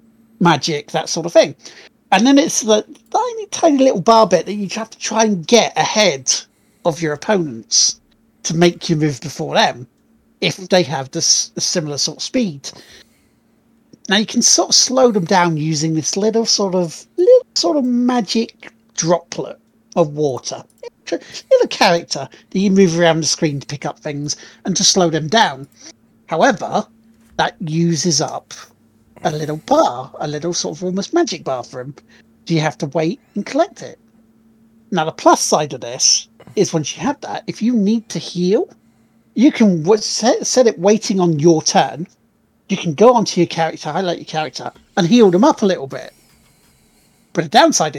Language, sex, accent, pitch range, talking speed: English, male, British, 155-225 Hz, 180 wpm